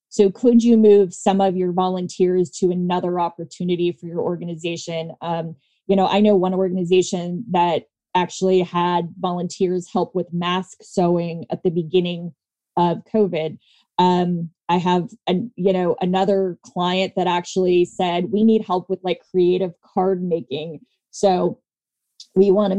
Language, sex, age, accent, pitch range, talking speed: English, female, 20-39, American, 175-200 Hz, 145 wpm